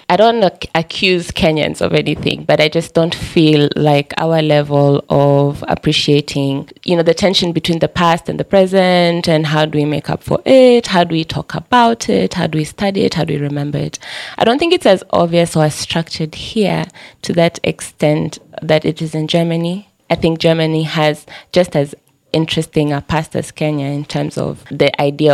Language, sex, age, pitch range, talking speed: English, female, 20-39, 150-175 Hz, 200 wpm